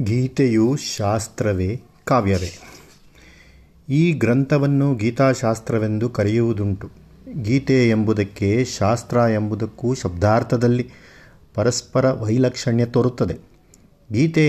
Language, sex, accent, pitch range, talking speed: Kannada, male, native, 110-130 Hz, 65 wpm